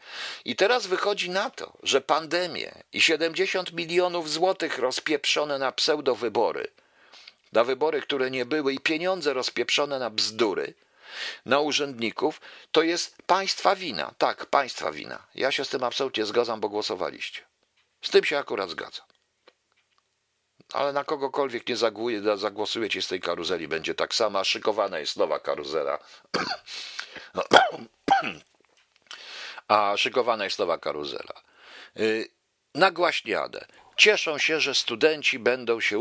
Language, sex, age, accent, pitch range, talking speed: Polish, male, 50-69, native, 130-190 Hz, 130 wpm